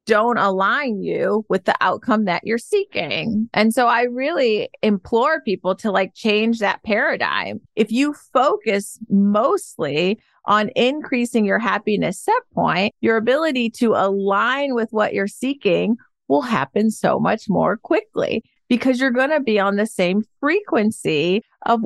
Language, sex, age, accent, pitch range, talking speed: English, female, 30-49, American, 195-240 Hz, 150 wpm